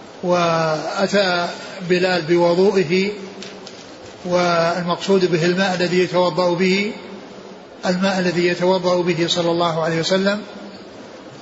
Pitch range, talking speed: 175-195 Hz, 90 wpm